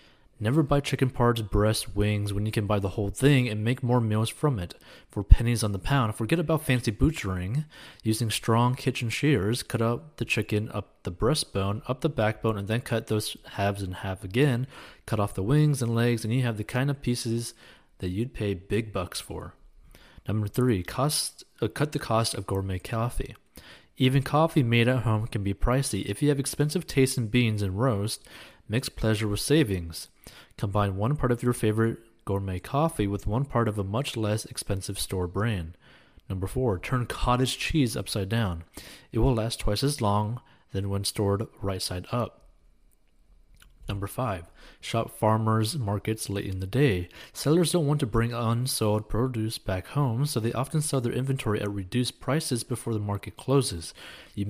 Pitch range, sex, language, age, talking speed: 100-125 Hz, male, English, 20-39, 185 wpm